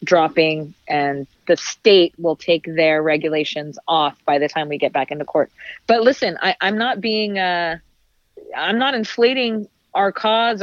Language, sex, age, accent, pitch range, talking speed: English, female, 30-49, American, 170-200 Hz, 165 wpm